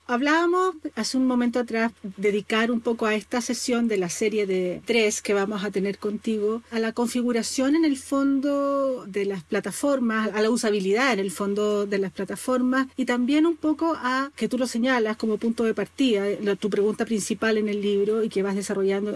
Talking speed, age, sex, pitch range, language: 195 wpm, 40-59, female, 210-260 Hz, Spanish